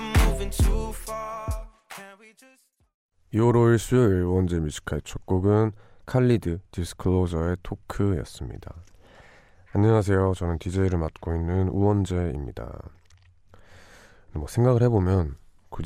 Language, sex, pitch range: Korean, male, 85-110 Hz